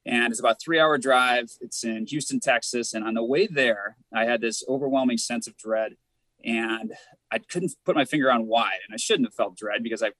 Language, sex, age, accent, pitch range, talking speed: English, male, 30-49, American, 115-140 Hz, 220 wpm